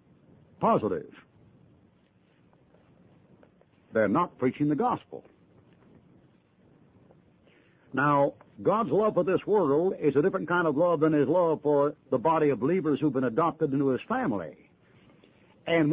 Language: English